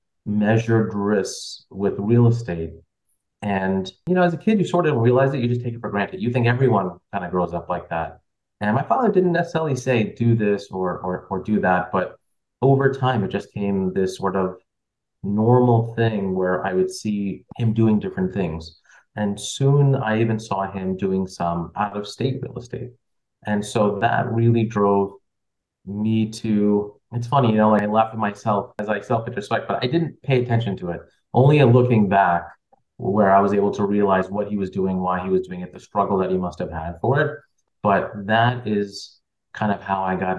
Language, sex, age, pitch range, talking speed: English, male, 30-49, 95-120 Hz, 205 wpm